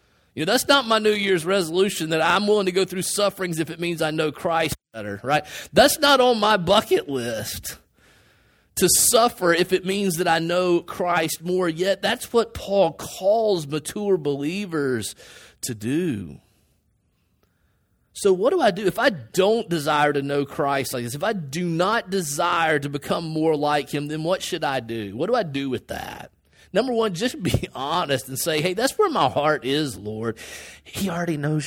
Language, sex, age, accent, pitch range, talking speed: English, male, 30-49, American, 120-195 Hz, 190 wpm